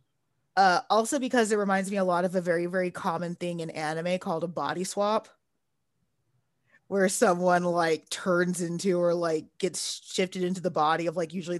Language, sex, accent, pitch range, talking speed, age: English, female, American, 175-210 Hz, 180 wpm, 20-39